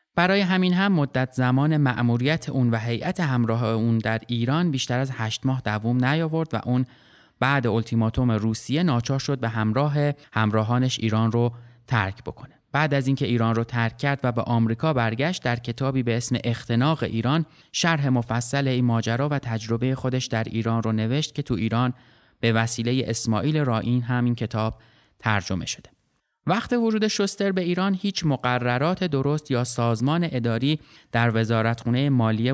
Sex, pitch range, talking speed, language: male, 115-150 Hz, 160 wpm, Persian